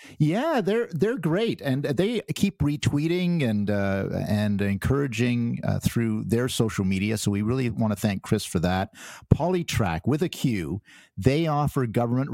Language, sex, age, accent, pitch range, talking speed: English, male, 50-69, American, 100-130 Hz, 160 wpm